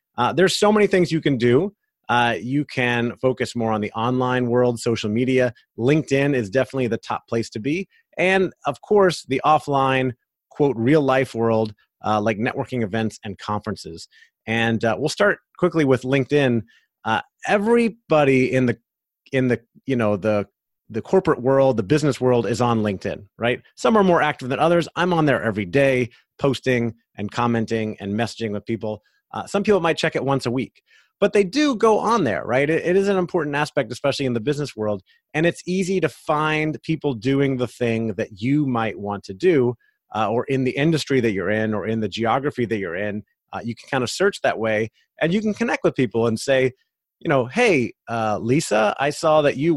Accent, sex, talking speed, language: American, male, 205 wpm, English